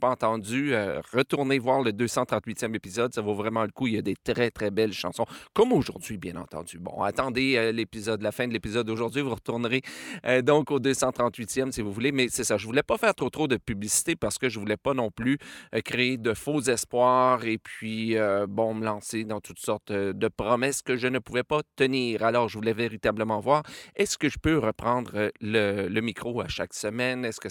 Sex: male